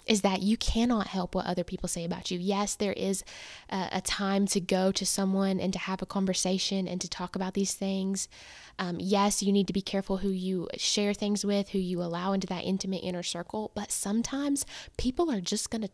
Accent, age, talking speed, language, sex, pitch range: American, 10-29, 220 wpm, English, female, 185-210 Hz